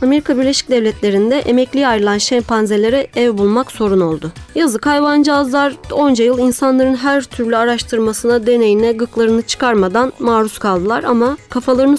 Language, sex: Turkish, female